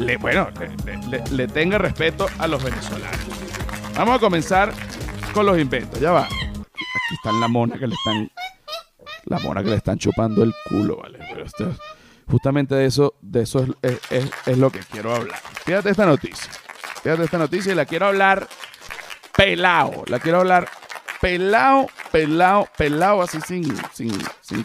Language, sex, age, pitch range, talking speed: Spanish, male, 50-69, 130-195 Hz, 170 wpm